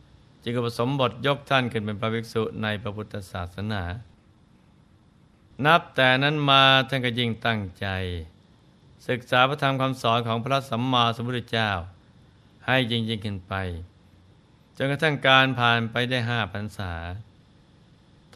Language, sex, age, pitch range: Thai, male, 60-79, 110-135 Hz